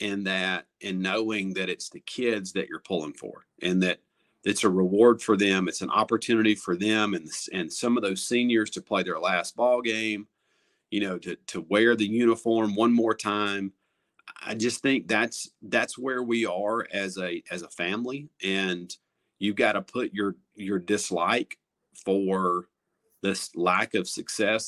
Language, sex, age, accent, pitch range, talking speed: English, male, 40-59, American, 95-115 Hz, 175 wpm